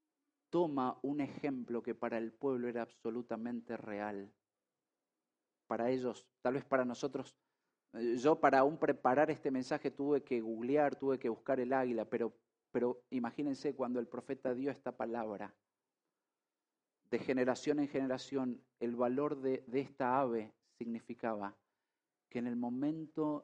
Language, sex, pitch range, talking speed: Spanish, male, 115-145 Hz, 140 wpm